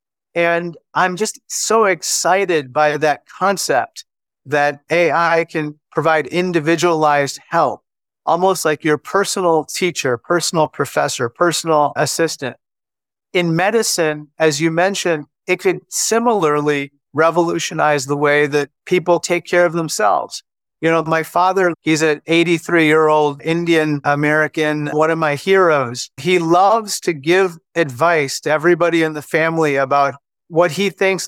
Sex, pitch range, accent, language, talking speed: male, 150-175 Hz, American, English, 130 wpm